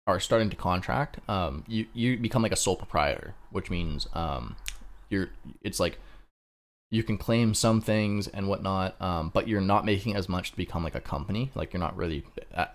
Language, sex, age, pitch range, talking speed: English, male, 20-39, 75-105 Hz, 200 wpm